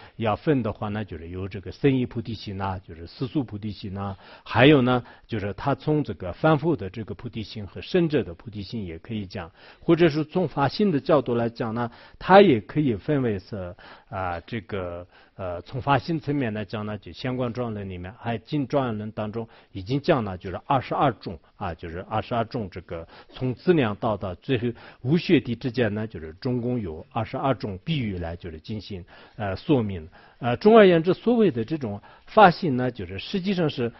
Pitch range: 95-140 Hz